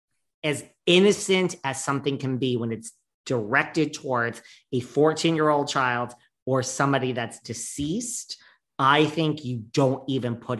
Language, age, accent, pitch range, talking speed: English, 40-59, American, 125-160 Hz, 140 wpm